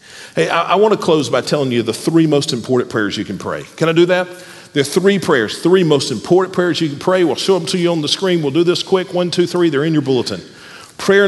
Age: 50-69